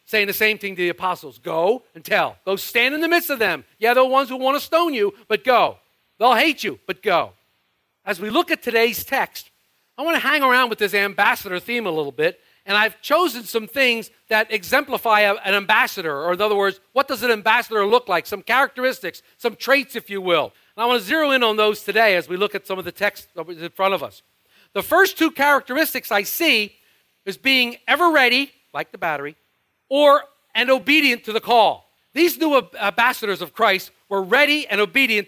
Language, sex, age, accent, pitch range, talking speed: English, male, 50-69, American, 205-270 Hz, 215 wpm